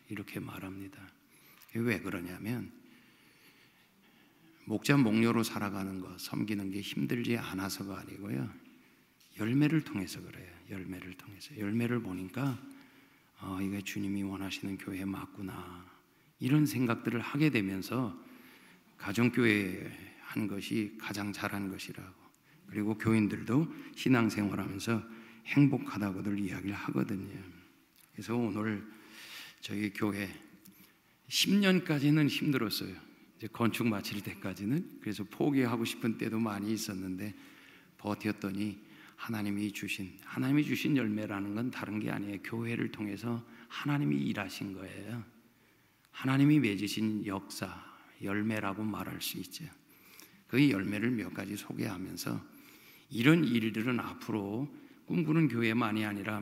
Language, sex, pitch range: Korean, male, 100-120 Hz